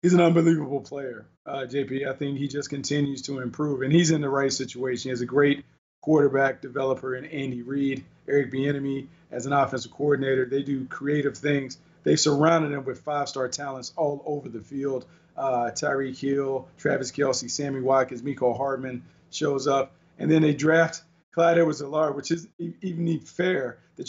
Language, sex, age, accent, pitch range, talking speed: English, male, 40-59, American, 135-160 Hz, 175 wpm